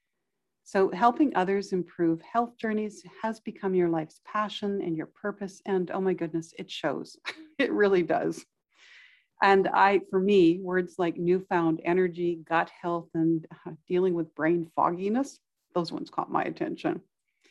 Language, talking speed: English, 145 wpm